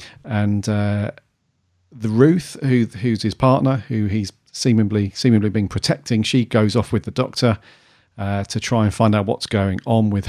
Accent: British